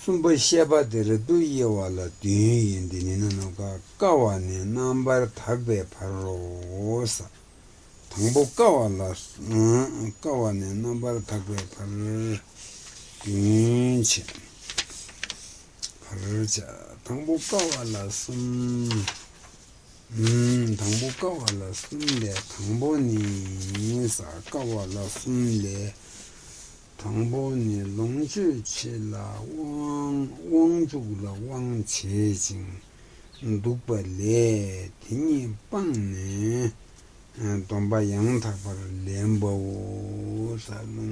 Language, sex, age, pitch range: Italian, male, 60-79, 100-120 Hz